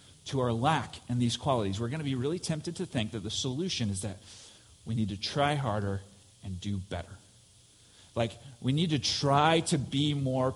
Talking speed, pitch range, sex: 200 wpm, 110-155 Hz, male